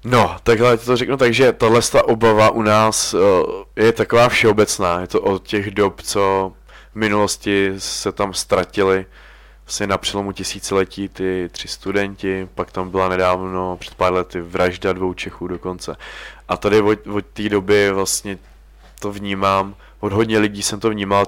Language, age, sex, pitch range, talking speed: Czech, 20-39, male, 95-105 Hz, 160 wpm